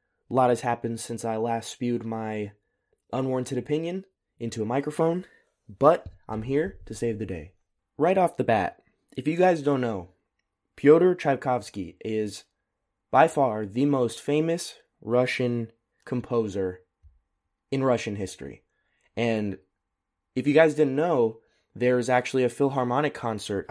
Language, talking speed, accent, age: English, 135 wpm, American, 20-39